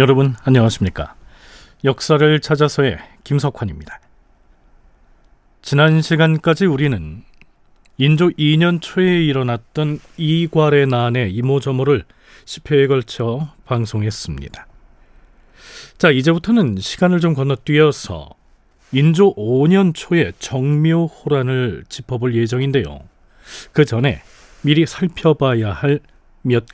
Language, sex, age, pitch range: Korean, male, 40-59, 115-160 Hz